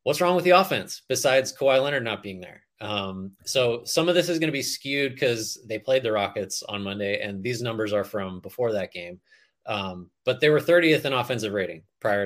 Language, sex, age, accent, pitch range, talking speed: English, male, 30-49, American, 105-140 Hz, 220 wpm